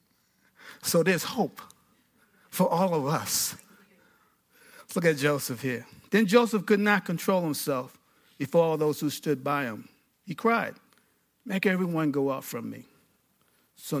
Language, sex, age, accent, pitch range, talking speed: English, male, 50-69, American, 155-220 Hz, 145 wpm